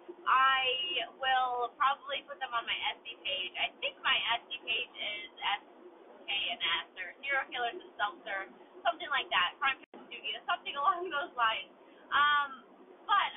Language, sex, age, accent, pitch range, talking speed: English, female, 20-39, American, 245-330 Hz, 155 wpm